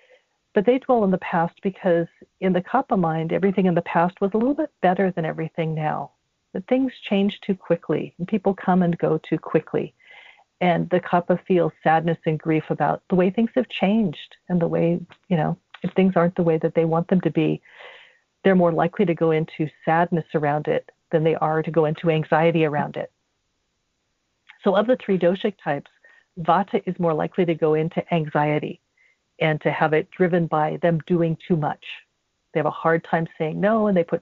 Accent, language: American, English